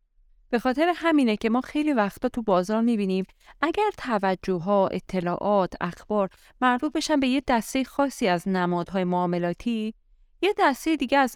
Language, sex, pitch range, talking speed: Persian, female, 180-235 Hz, 155 wpm